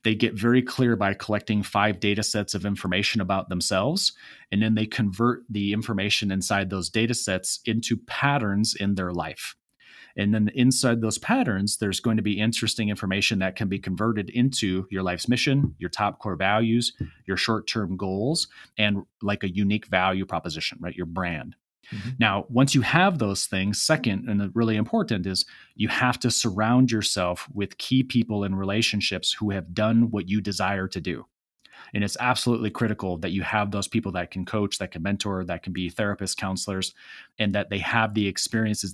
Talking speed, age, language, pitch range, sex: 185 wpm, 30-49, English, 95-115 Hz, male